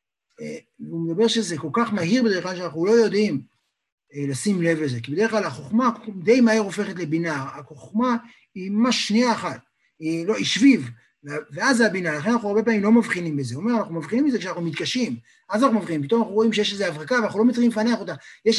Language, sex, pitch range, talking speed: Hebrew, male, 165-230 Hz, 200 wpm